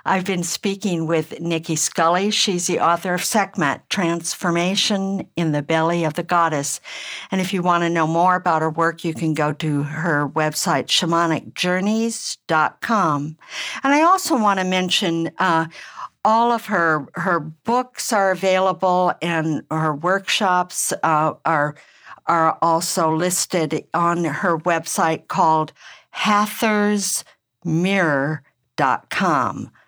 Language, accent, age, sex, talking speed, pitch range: English, American, 60-79, female, 125 wpm, 155-190 Hz